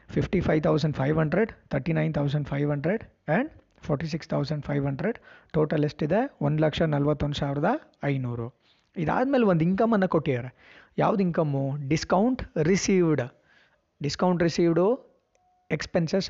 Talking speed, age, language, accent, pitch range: 85 wpm, 20-39, Kannada, native, 145-185 Hz